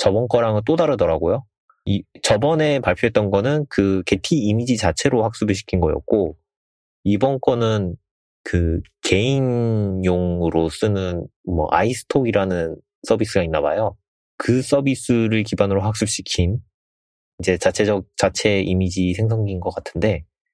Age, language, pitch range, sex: 30-49, Korean, 90-120 Hz, male